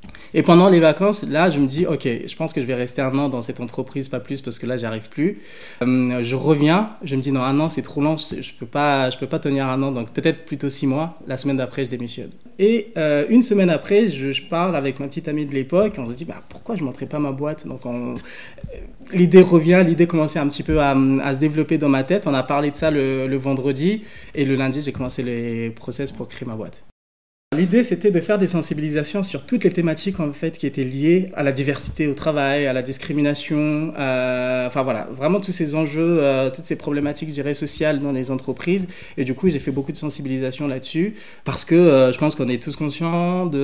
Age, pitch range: 20-39, 130-160 Hz